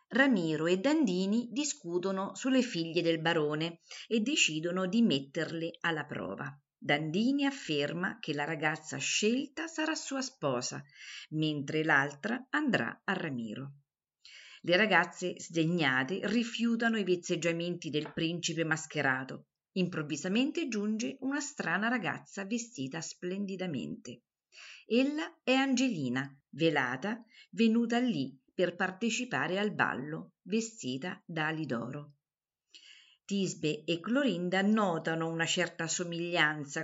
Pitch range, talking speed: 155-230 Hz, 105 wpm